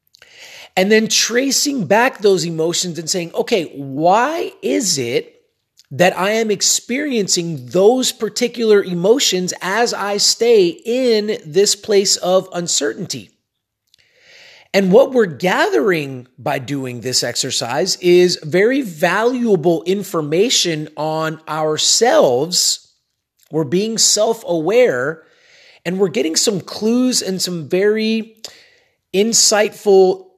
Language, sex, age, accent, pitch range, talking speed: English, male, 30-49, American, 165-230 Hz, 105 wpm